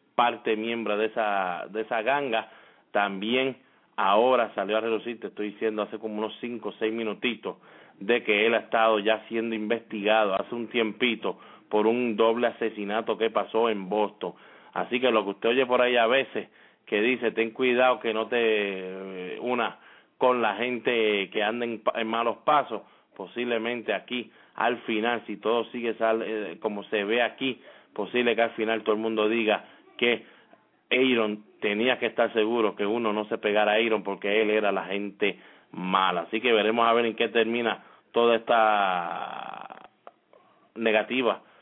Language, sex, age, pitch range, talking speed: English, male, 30-49, 105-120 Hz, 165 wpm